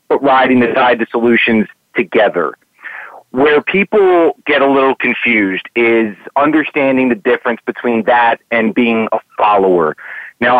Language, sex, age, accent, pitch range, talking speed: English, male, 40-59, American, 120-155 Hz, 135 wpm